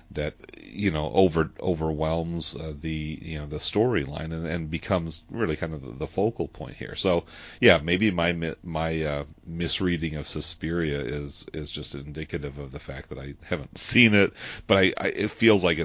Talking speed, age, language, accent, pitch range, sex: 185 wpm, 40-59, English, American, 75-85 Hz, male